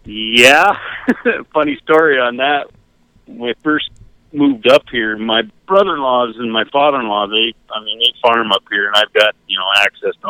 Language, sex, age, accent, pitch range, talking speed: English, male, 50-69, American, 105-140 Hz, 175 wpm